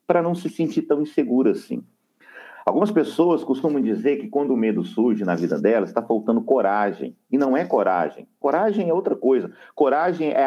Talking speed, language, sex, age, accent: 185 wpm, Portuguese, male, 50-69, Brazilian